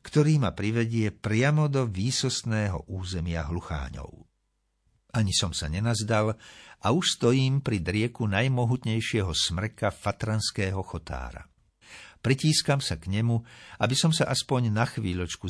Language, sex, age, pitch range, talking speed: Slovak, male, 60-79, 90-120 Hz, 120 wpm